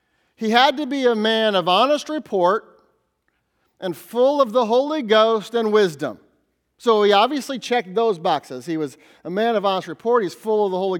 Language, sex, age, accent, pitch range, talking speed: English, male, 40-59, American, 180-230 Hz, 190 wpm